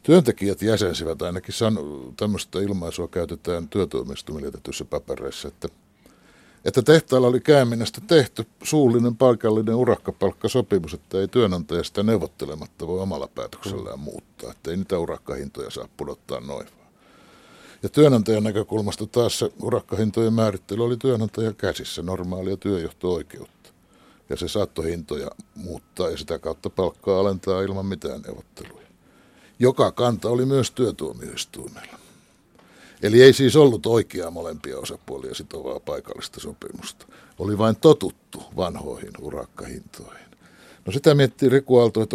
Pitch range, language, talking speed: 100-125 Hz, Finnish, 120 wpm